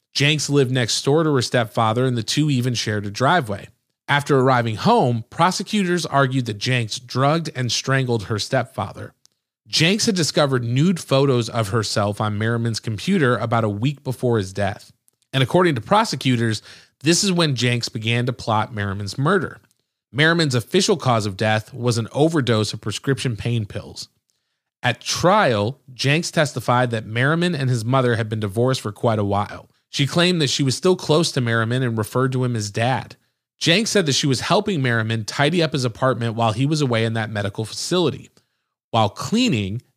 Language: English